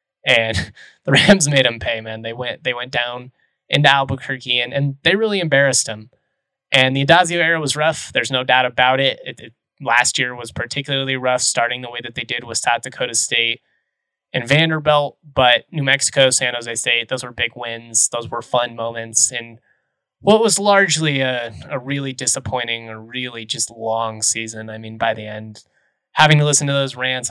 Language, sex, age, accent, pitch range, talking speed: English, male, 20-39, American, 115-145 Hz, 195 wpm